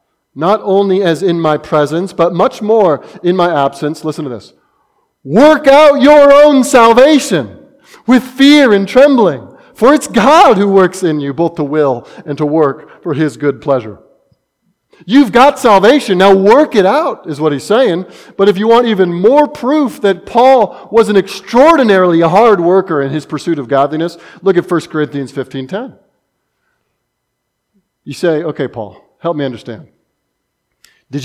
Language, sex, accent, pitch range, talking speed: English, male, American, 150-235 Hz, 160 wpm